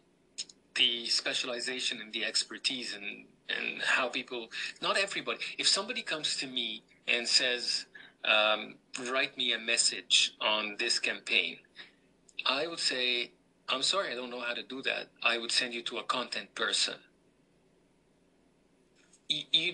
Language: English